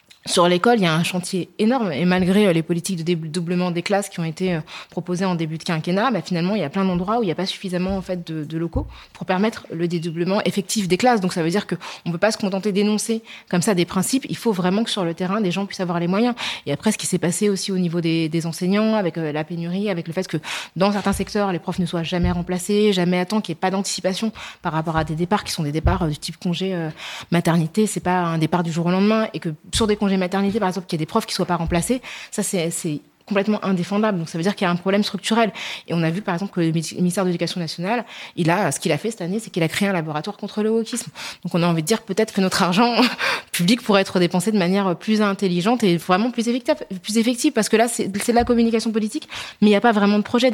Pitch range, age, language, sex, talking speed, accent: 175-210 Hz, 20-39, French, female, 285 wpm, French